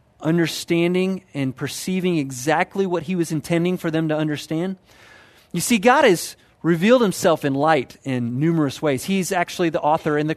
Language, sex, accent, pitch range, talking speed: English, male, American, 140-190 Hz, 170 wpm